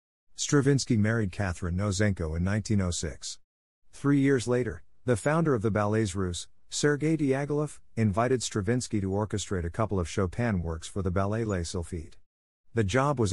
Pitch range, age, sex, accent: 90-115 Hz, 50-69, male, American